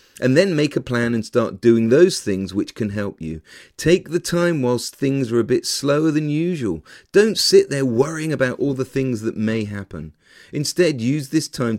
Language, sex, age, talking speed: English, male, 40-59, 205 wpm